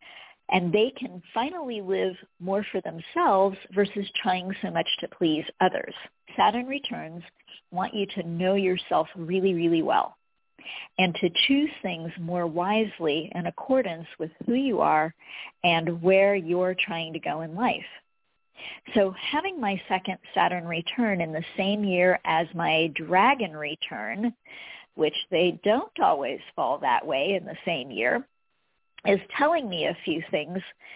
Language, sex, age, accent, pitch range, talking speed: English, female, 50-69, American, 170-220 Hz, 145 wpm